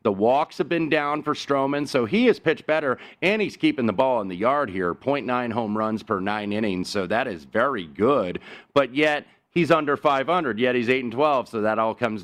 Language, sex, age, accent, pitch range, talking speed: English, male, 30-49, American, 100-125 Hz, 220 wpm